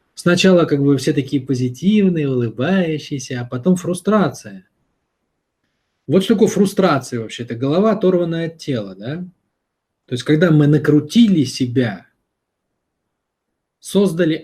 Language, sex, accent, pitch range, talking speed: Russian, male, native, 115-150 Hz, 110 wpm